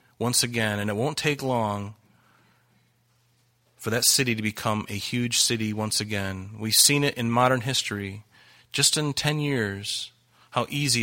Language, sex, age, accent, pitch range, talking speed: English, male, 30-49, American, 110-150 Hz, 160 wpm